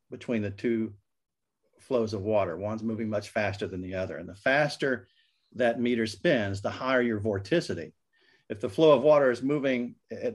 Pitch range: 110-130 Hz